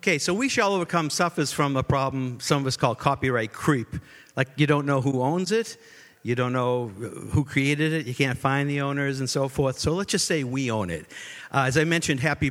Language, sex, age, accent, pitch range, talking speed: English, male, 50-69, American, 125-155 Hz, 230 wpm